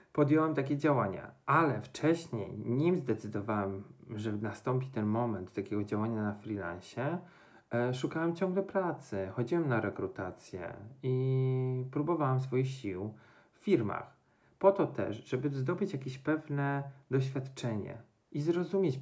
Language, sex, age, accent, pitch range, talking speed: Polish, male, 40-59, native, 110-140 Hz, 120 wpm